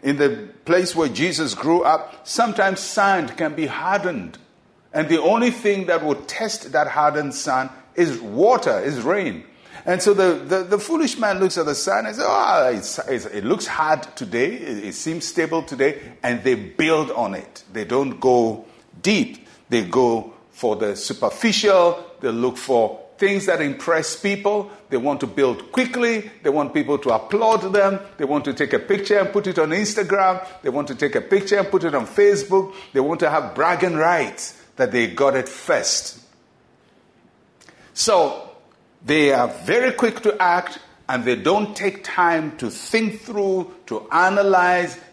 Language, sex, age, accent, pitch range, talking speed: English, male, 50-69, Nigerian, 145-200 Hz, 175 wpm